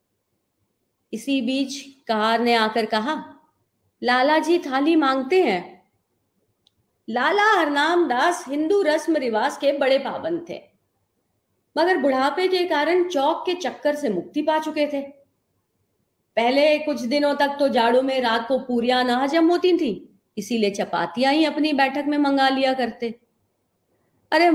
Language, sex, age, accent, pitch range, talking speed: Hindi, female, 40-59, native, 235-305 Hz, 135 wpm